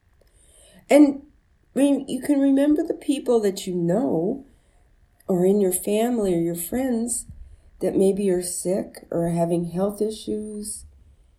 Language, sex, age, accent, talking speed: English, female, 50-69, American, 125 wpm